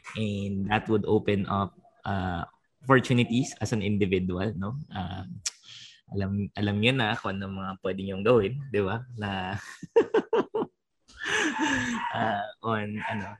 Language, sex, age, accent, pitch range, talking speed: English, male, 20-39, Filipino, 100-125 Hz, 115 wpm